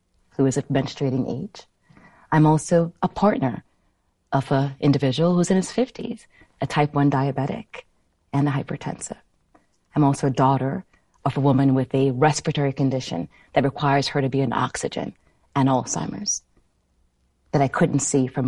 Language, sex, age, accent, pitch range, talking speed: English, female, 30-49, American, 135-165 Hz, 155 wpm